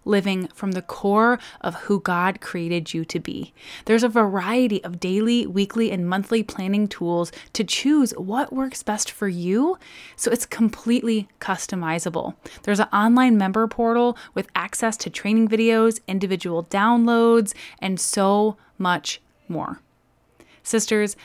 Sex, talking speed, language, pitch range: female, 140 wpm, English, 185-235 Hz